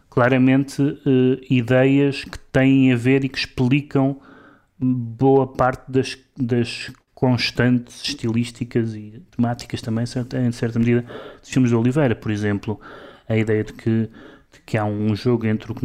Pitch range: 110-125 Hz